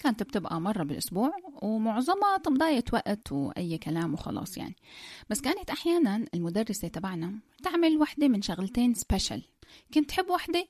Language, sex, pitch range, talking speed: Arabic, female, 200-290 Hz, 135 wpm